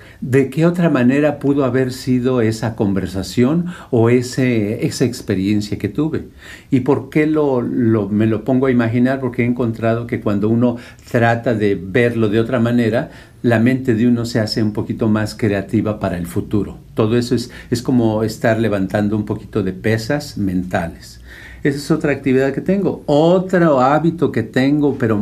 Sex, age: male, 50-69